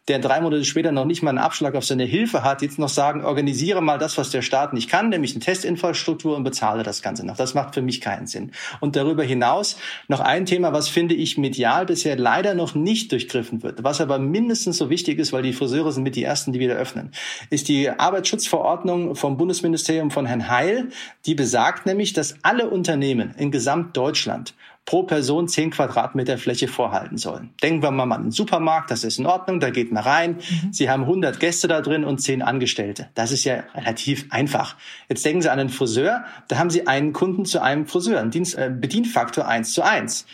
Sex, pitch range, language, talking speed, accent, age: male, 130-170 Hz, German, 205 wpm, German, 40-59